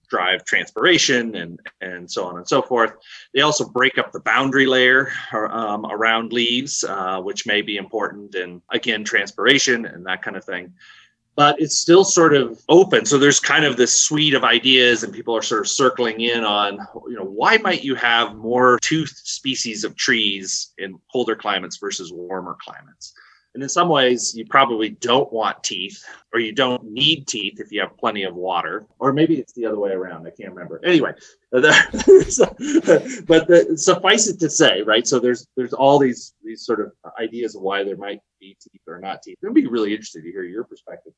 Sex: male